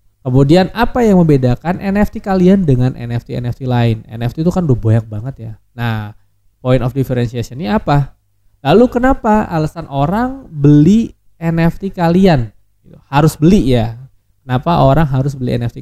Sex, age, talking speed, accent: male, 20-39, 140 wpm, native